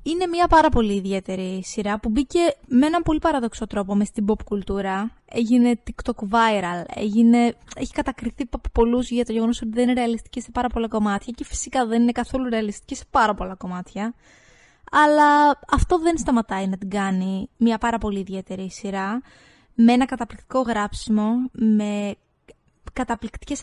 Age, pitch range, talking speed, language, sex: 20-39, 205-240 Hz, 160 wpm, Greek, female